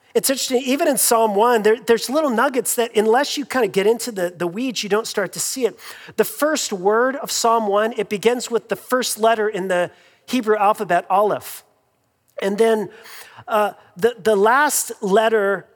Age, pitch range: 40-59, 200-250 Hz